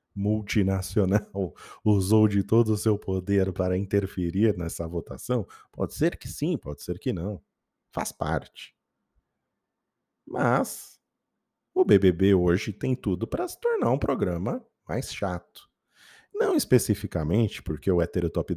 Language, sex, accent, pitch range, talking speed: Portuguese, male, Brazilian, 85-110 Hz, 125 wpm